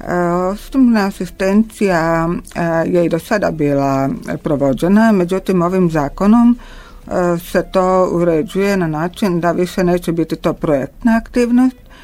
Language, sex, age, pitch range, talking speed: Croatian, female, 50-69, 145-185 Hz, 115 wpm